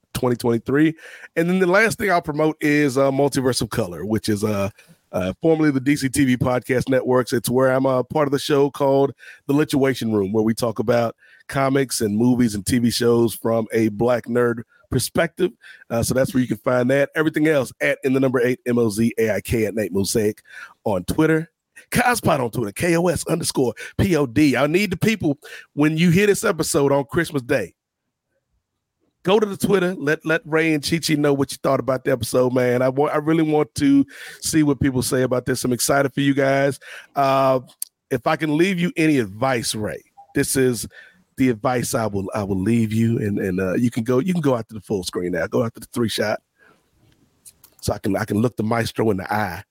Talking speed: 210 wpm